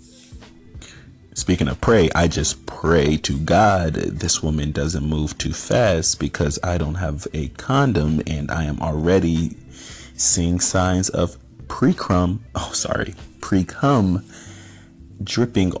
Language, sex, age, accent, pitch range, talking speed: English, male, 30-49, American, 80-105 Hz, 120 wpm